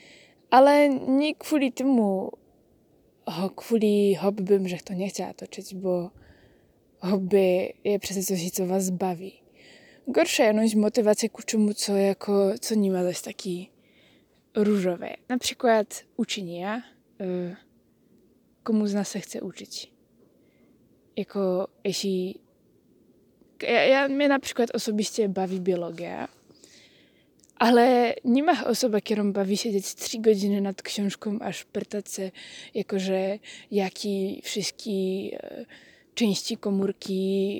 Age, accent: 20-39, native